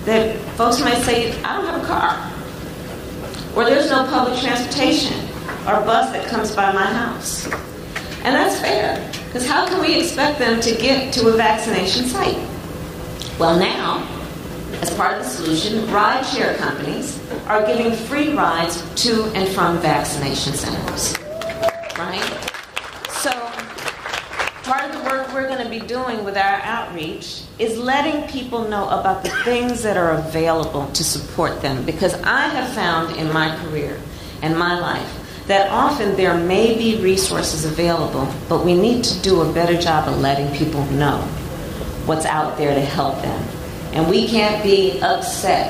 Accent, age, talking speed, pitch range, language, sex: American, 40-59, 160 wpm, 160-235 Hz, English, female